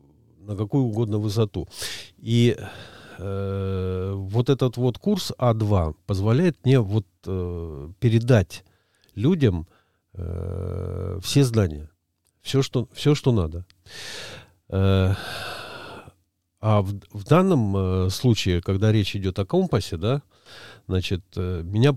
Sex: male